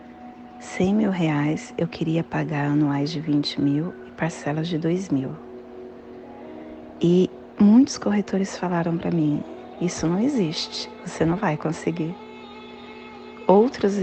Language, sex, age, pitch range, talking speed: Portuguese, female, 30-49, 140-195 Hz, 125 wpm